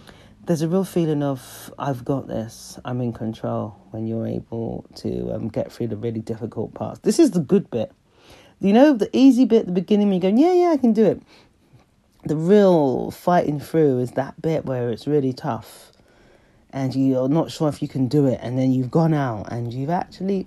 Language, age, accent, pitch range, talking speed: English, 40-59, British, 125-180 Hz, 210 wpm